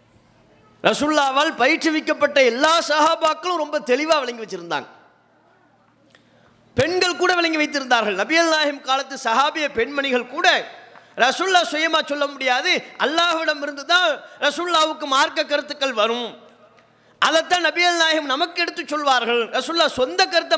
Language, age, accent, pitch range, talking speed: English, 30-49, Indian, 255-315 Hz, 105 wpm